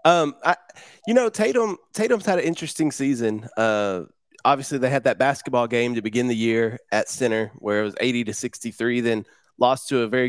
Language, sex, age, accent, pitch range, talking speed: English, male, 20-39, American, 115-145 Hz, 205 wpm